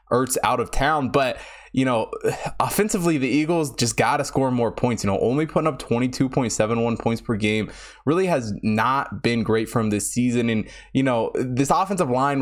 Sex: male